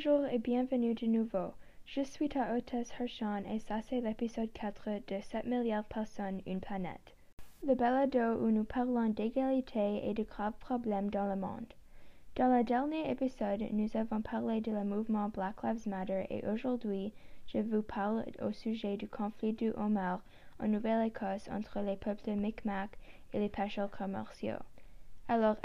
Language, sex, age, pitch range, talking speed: French, female, 10-29, 205-240 Hz, 165 wpm